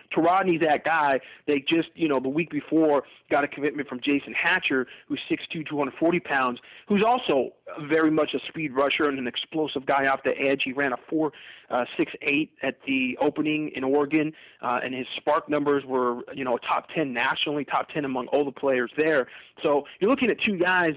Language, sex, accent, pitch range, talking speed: English, male, American, 135-160 Hz, 195 wpm